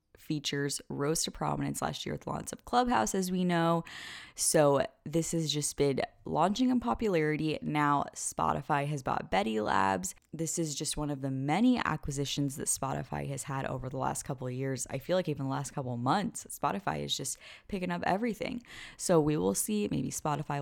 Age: 10-29